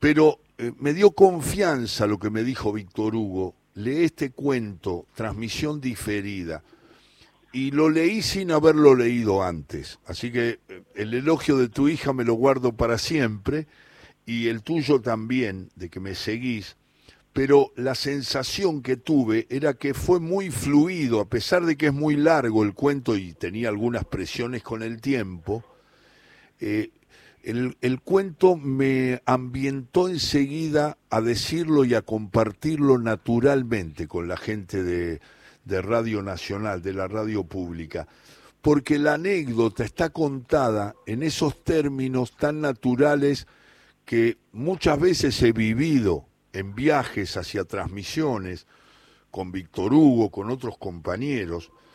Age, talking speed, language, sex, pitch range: 60-79, 135 wpm, Spanish, male, 105-145 Hz